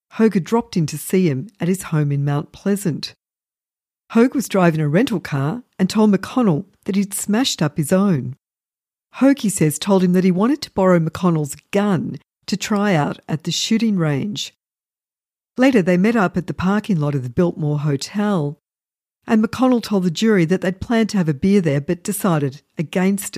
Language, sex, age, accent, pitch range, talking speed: English, female, 50-69, Australian, 160-215 Hz, 195 wpm